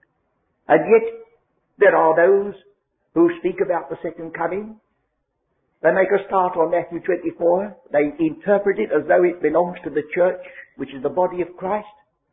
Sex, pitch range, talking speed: male, 165-270 Hz, 165 wpm